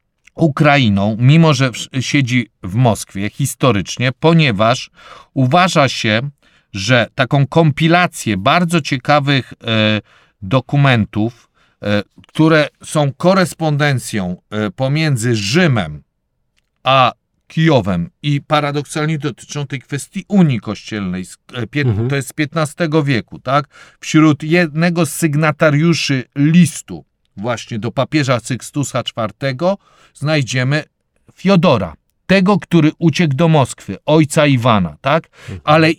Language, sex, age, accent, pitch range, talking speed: Polish, male, 50-69, native, 125-160 Hz, 95 wpm